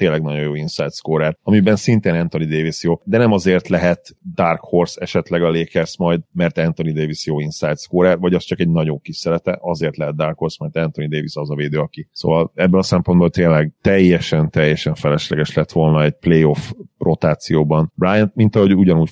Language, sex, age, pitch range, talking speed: Hungarian, male, 30-49, 80-95 Hz, 190 wpm